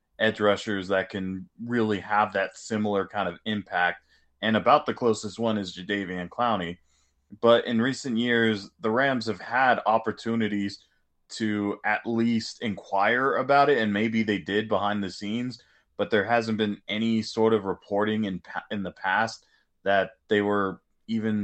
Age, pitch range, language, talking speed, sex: 20-39, 100-115 Hz, English, 160 wpm, male